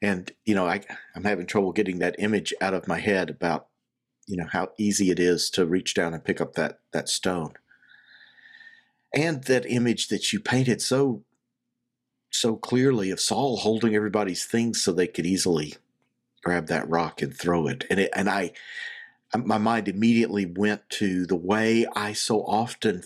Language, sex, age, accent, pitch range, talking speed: English, male, 50-69, American, 100-130 Hz, 175 wpm